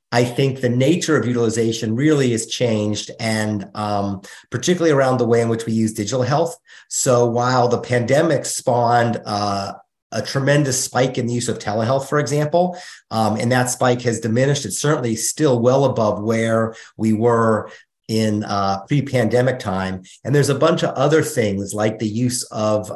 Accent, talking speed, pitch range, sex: American, 170 wpm, 105-125 Hz, male